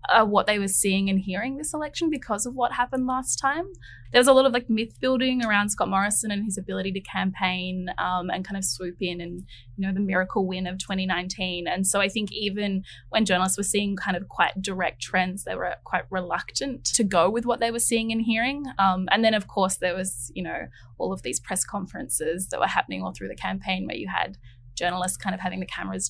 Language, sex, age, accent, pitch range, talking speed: English, female, 10-29, Australian, 185-230 Hz, 235 wpm